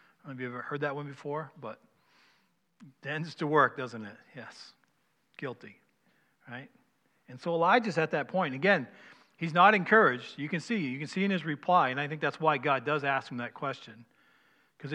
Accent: American